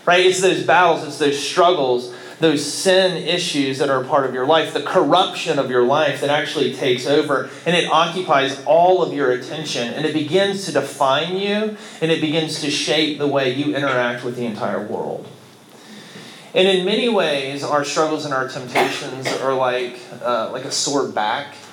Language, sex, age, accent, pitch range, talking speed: English, male, 30-49, American, 125-160 Hz, 190 wpm